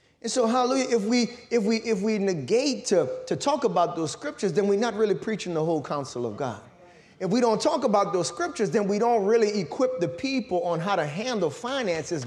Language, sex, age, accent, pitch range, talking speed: English, male, 30-49, American, 175-245 Hz, 220 wpm